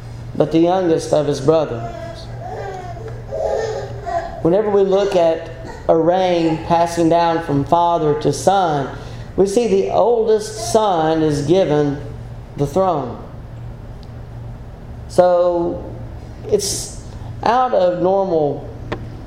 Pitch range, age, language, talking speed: 120-180 Hz, 40-59, English, 100 wpm